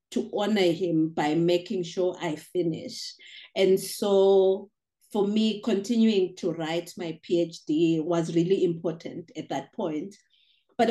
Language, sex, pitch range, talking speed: English, female, 170-205 Hz, 130 wpm